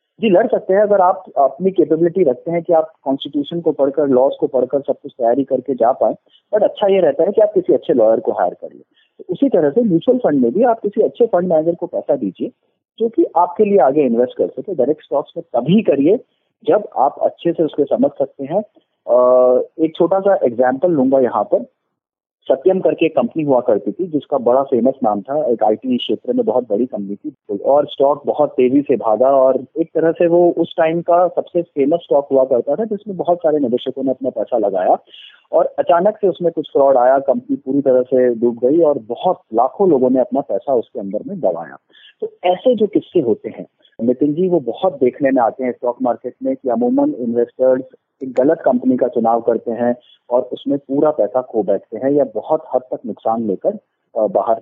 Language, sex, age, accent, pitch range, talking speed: Hindi, male, 30-49, native, 130-195 Hz, 215 wpm